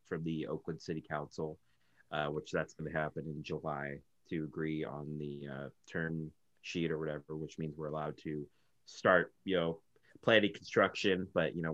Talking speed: 180 wpm